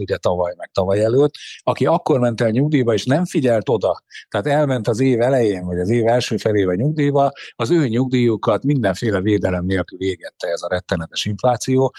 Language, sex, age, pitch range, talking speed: Hungarian, male, 60-79, 105-125 Hz, 185 wpm